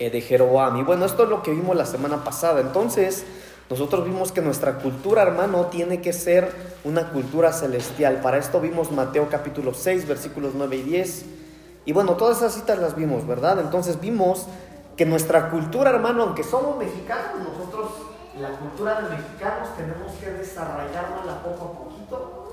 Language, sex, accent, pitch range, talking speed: Spanish, male, Mexican, 135-185 Hz, 170 wpm